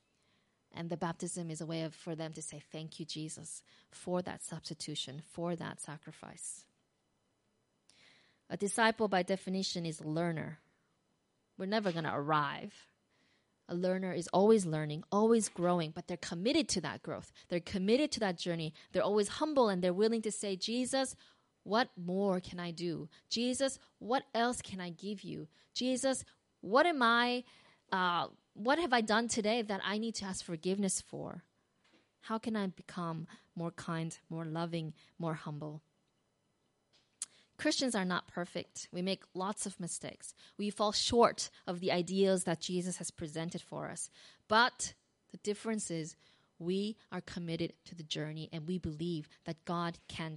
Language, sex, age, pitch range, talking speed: English, female, 20-39, 165-210 Hz, 160 wpm